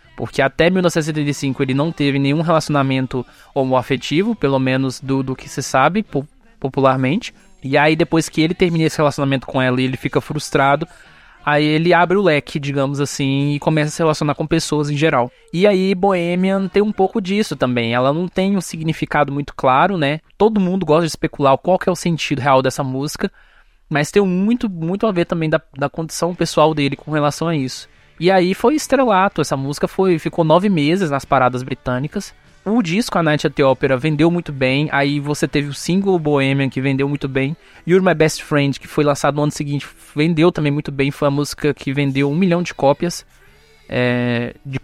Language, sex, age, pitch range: Portuguese, male, 20-39, 140-175 Hz